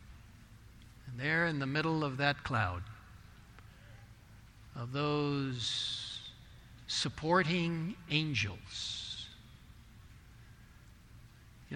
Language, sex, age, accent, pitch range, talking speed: English, male, 60-79, American, 110-155 Hz, 60 wpm